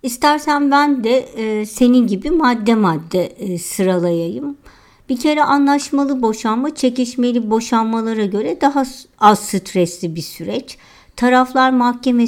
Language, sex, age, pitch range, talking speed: Turkish, male, 50-69, 205-260 Hz, 110 wpm